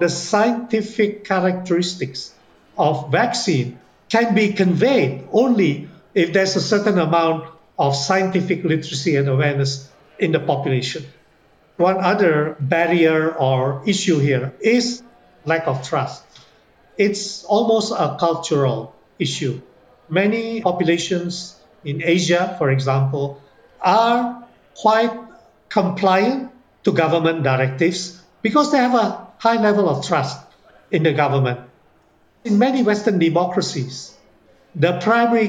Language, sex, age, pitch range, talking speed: English, male, 50-69, 145-195 Hz, 110 wpm